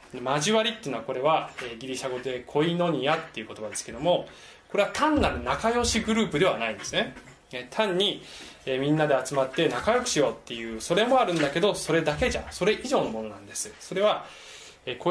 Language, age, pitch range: Japanese, 20-39, 115-185 Hz